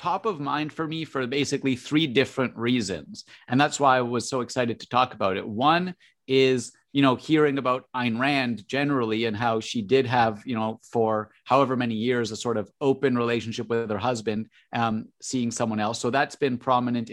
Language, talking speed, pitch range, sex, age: English, 200 wpm, 115-130 Hz, male, 30-49